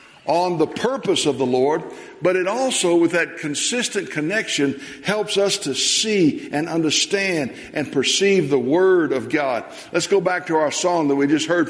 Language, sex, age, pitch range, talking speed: English, male, 60-79, 130-185 Hz, 180 wpm